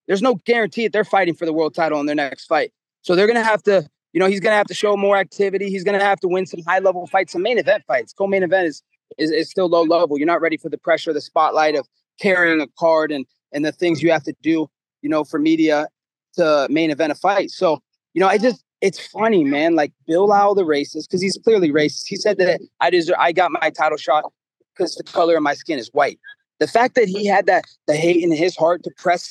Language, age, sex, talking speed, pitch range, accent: English, 30-49, male, 255 wpm, 160-205 Hz, American